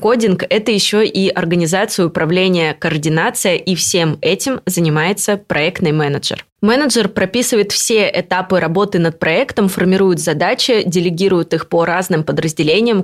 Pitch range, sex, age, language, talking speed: 170-215 Hz, female, 20-39, Russian, 130 wpm